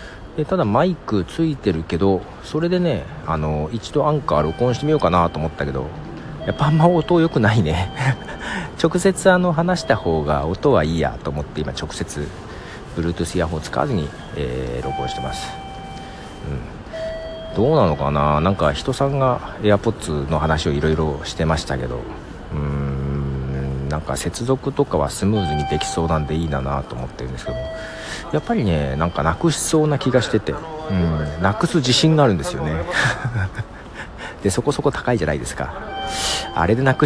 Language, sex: Japanese, male